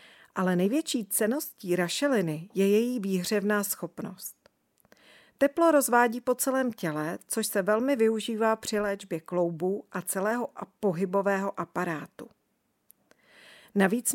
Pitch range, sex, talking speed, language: 180-225 Hz, female, 105 wpm, Czech